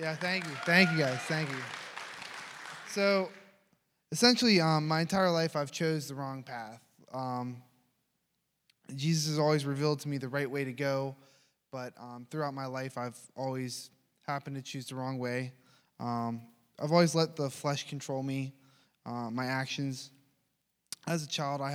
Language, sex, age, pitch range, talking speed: English, male, 20-39, 125-145 Hz, 165 wpm